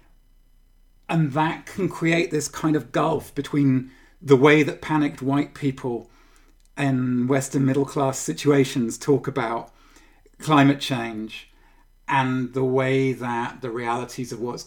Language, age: Swedish, 40-59